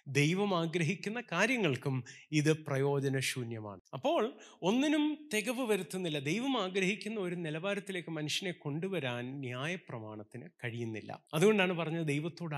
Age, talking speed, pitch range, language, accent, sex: 30-49, 85 wpm, 130-185 Hz, Malayalam, native, male